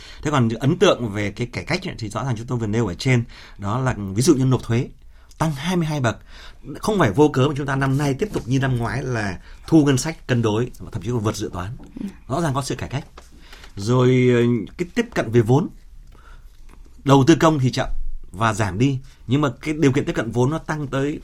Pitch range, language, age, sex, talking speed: 105-135 Hz, Vietnamese, 30-49, male, 235 wpm